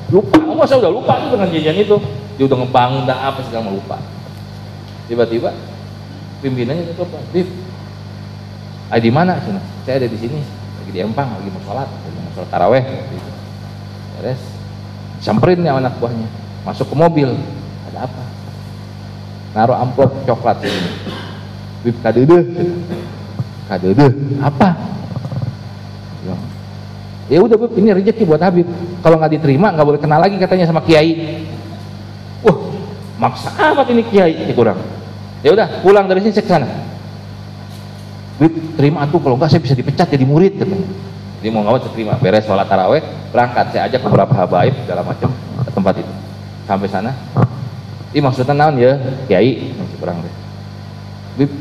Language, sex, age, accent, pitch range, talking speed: Indonesian, male, 50-69, native, 100-140 Hz, 150 wpm